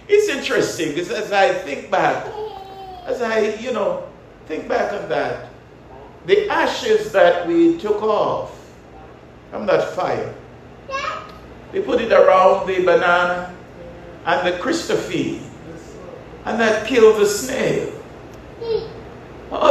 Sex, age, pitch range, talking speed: male, 60-79, 220-370 Hz, 120 wpm